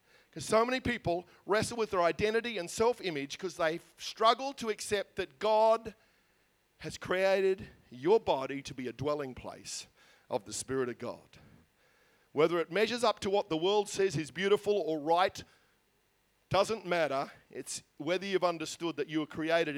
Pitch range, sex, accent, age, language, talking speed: 155-200 Hz, male, Australian, 50-69, English, 165 wpm